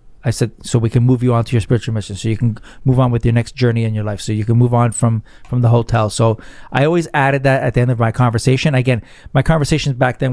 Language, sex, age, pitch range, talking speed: English, male, 40-59, 115-135 Hz, 285 wpm